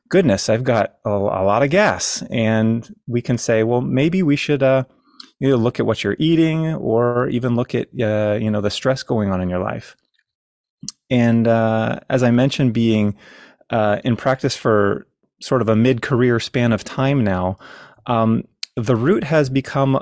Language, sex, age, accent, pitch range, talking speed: English, male, 30-49, American, 110-130 Hz, 175 wpm